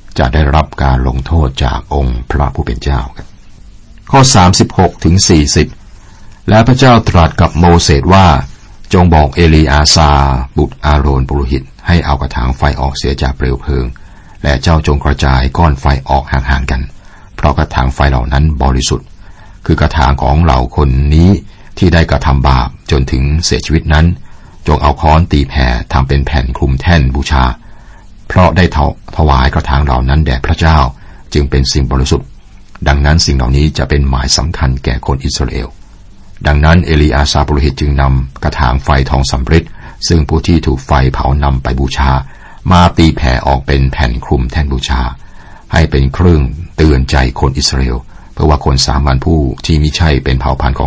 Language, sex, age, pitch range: Thai, male, 60-79, 65-85 Hz